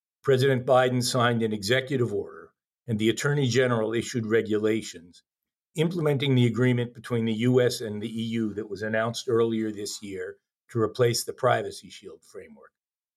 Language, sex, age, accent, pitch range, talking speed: English, male, 50-69, American, 110-130 Hz, 150 wpm